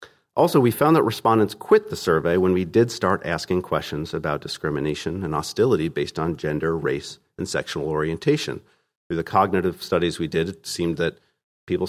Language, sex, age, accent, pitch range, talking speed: English, male, 40-59, American, 85-120 Hz, 175 wpm